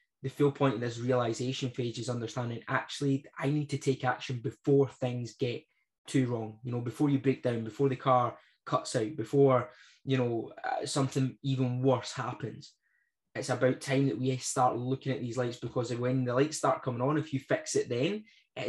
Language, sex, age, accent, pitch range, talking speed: English, male, 20-39, British, 120-135 Hz, 195 wpm